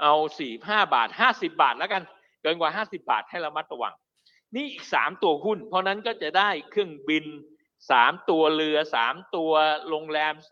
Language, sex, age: Thai, male, 60-79